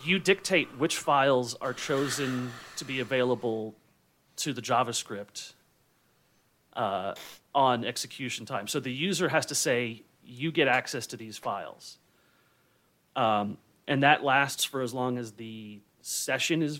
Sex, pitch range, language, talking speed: male, 115-145 Hz, English, 140 wpm